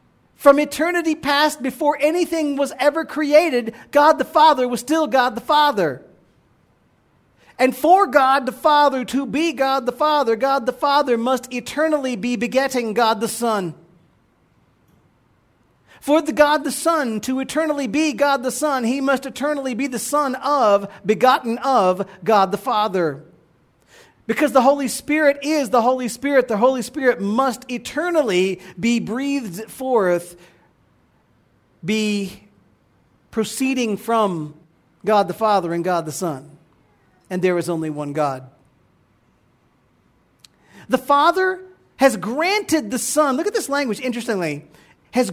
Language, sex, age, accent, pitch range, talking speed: English, male, 40-59, American, 200-290 Hz, 135 wpm